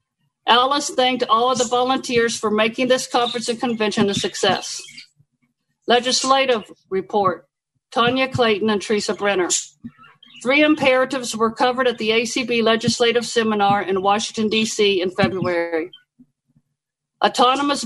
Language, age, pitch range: English, 50-69, 195-245 Hz